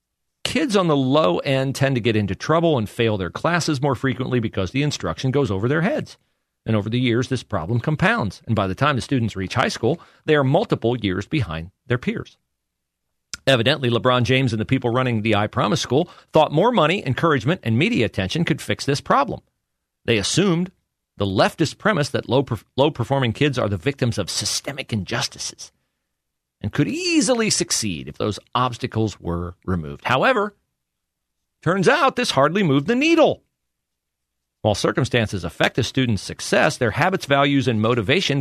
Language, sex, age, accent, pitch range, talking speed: English, male, 40-59, American, 105-155 Hz, 170 wpm